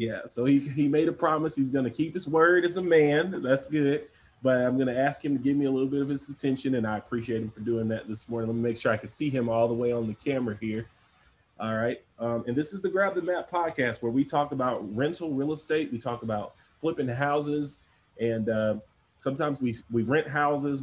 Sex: male